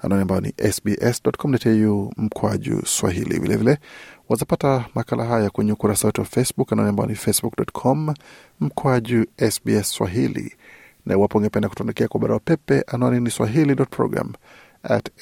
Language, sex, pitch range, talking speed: Swahili, male, 110-130 Hz, 125 wpm